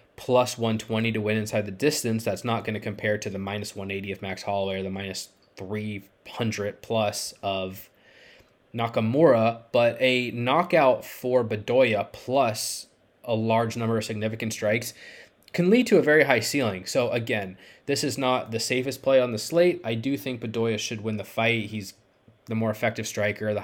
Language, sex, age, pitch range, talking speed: English, male, 20-39, 100-115 Hz, 180 wpm